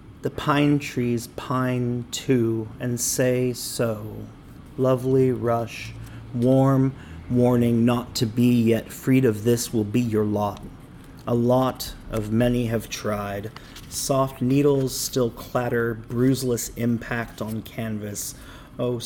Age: 30-49